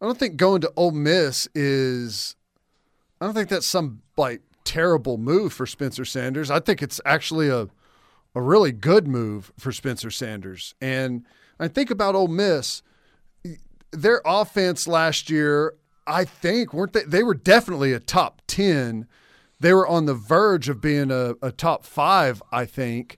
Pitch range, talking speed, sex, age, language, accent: 135-185 Hz, 165 wpm, male, 40-59, English, American